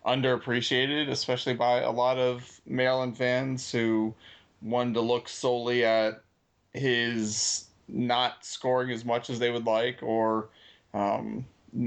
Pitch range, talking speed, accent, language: 115-135 Hz, 130 wpm, American, English